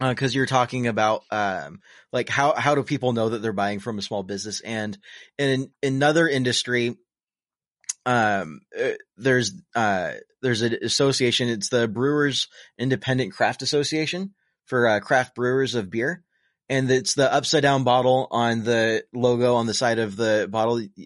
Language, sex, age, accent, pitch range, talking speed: English, male, 20-39, American, 110-135 Hz, 160 wpm